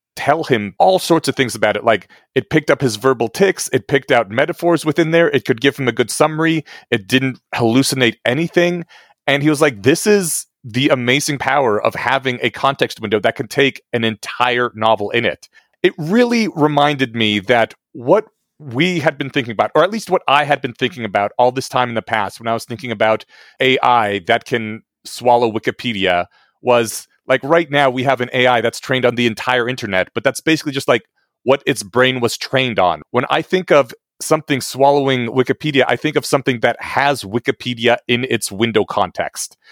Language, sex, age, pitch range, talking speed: English, male, 30-49, 115-145 Hz, 200 wpm